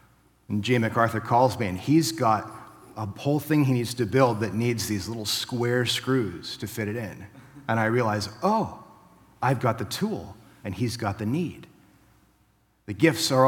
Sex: male